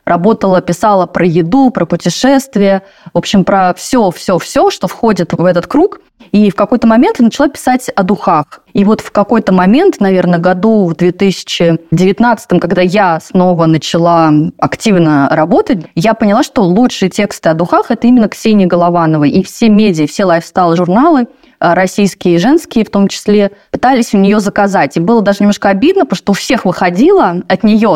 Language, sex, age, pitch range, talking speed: Russian, female, 20-39, 175-225 Hz, 170 wpm